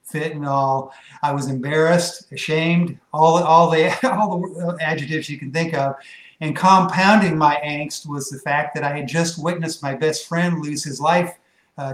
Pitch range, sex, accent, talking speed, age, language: 140-160 Hz, male, American, 180 wpm, 50-69, English